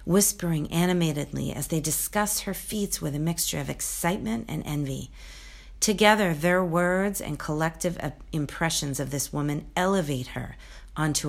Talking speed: 140 wpm